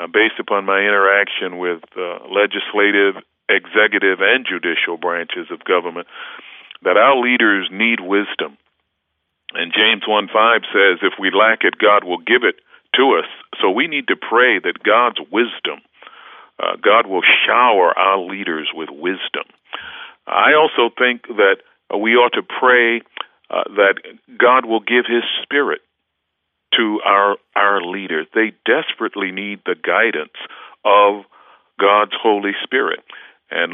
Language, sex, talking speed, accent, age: English, male, 135 wpm, American, 50-69